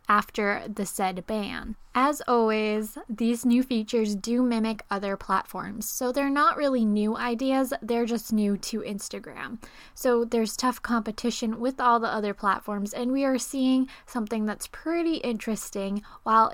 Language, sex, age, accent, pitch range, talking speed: English, female, 10-29, American, 205-245 Hz, 150 wpm